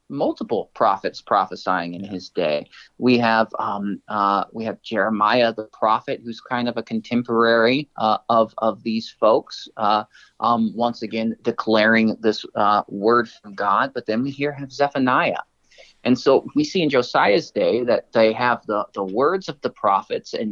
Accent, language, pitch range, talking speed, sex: American, English, 110-125 Hz, 170 wpm, male